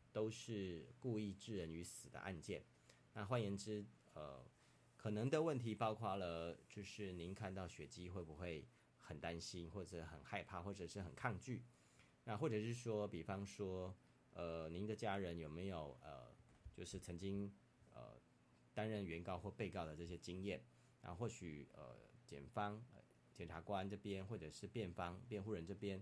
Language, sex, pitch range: Chinese, male, 85-105 Hz